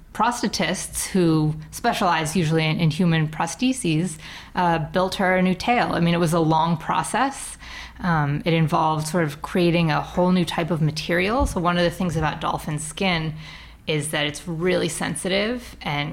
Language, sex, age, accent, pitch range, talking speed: English, female, 30-49, American, 155-180 Hz, 175 wpm